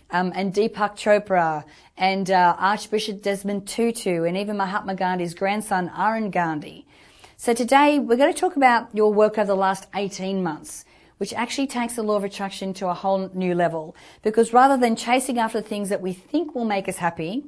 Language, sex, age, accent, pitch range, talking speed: English, female, 40-59, Australian, 185-225 Hz, 190 wpm